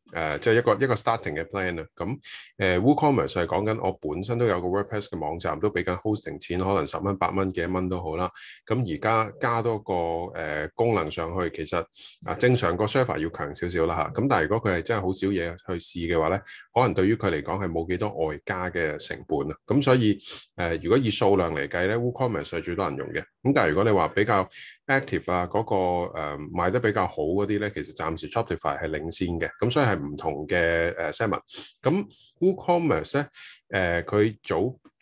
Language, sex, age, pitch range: Chinese, male, 20-39, 85-115 Hz